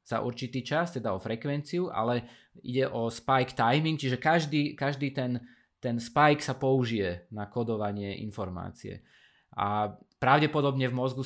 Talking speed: 135 wpm